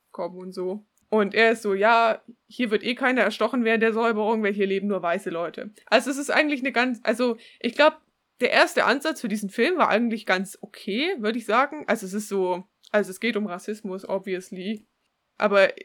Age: 20-39